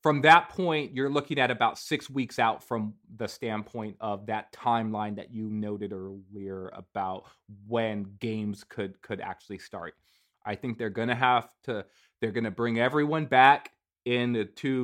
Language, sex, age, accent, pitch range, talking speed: English, male, 30-49, American, 110-135 Hz, 165 wpm